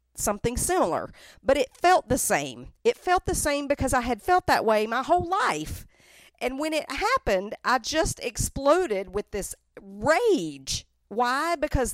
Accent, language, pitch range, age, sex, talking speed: American, English, 195-275 Hz, 50-69, female, 160 wpm